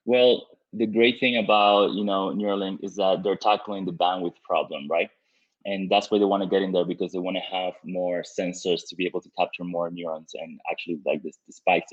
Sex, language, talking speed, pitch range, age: male, English, 225 wpm, 90-105 Hz, 20-39